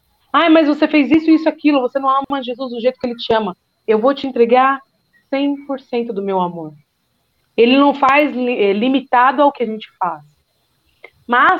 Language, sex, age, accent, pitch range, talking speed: Portuguese, female, 40-59, Brazilian, 225-290 Hz, 190 wpm